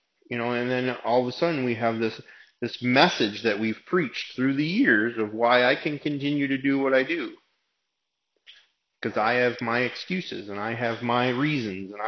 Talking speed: 200 wpm